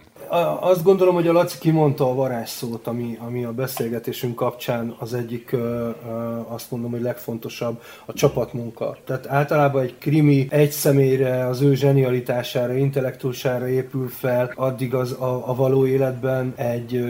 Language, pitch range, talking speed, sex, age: Hungarian, 115-135 Hz, 135 wpm, male, 30-49